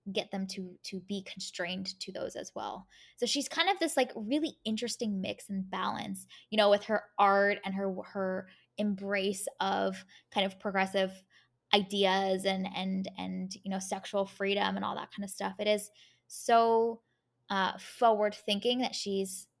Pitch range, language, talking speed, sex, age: 190-225 Hz, English, 170 wpm, female, 10-29